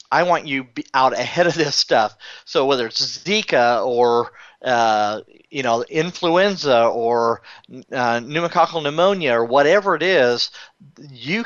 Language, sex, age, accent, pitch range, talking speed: English, male, 40-59, American, 125-160 Hz, 140 wpm